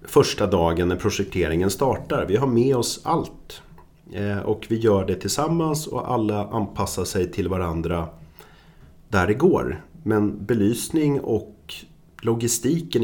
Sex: male